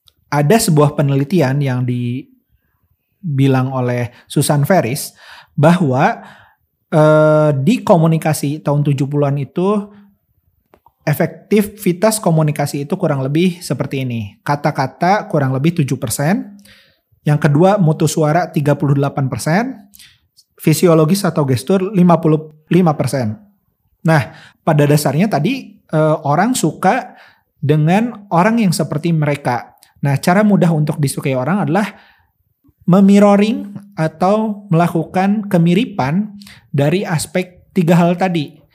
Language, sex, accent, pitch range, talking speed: Indonesian, male, native, 140-185 Hz, 100 wpm